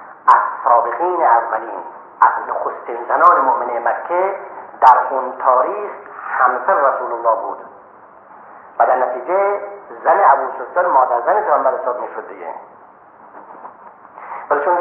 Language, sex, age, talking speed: Persian, male, 50-69, 120 wpm